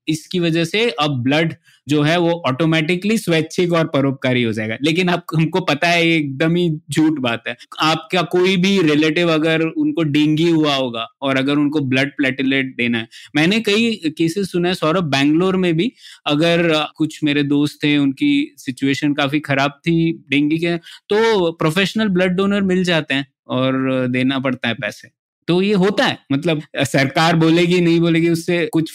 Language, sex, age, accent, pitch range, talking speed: Hindi, male, 20-39, native, 140-175 Hz, 175 wpm